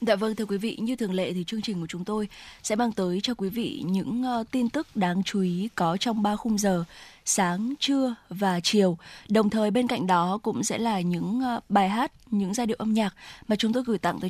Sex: female